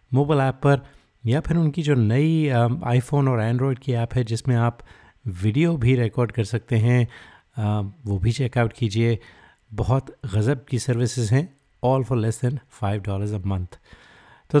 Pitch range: 110-135 Hz